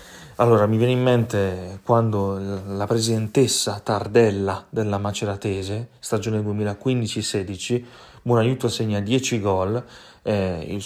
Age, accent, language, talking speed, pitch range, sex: 30-49, native, Italian, 105 wpm, 100-115 Hz, male